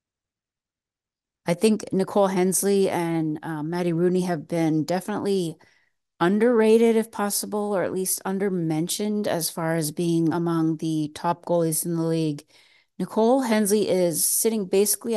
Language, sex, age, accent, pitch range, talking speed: English, female, 30-49, American, 160-190 Hz, 135 wpm